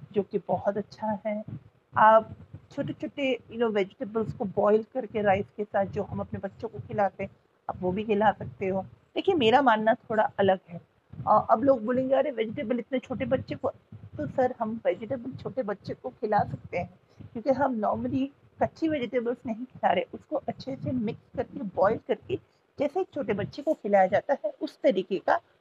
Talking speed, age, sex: 185 wpm, 50-69, female